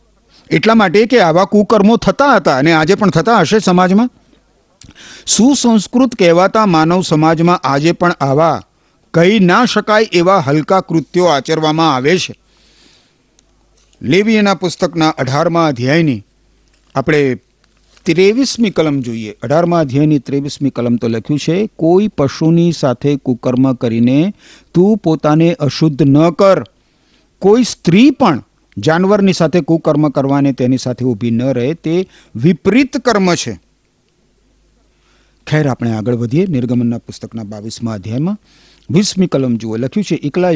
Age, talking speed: 50-69, 100 wpm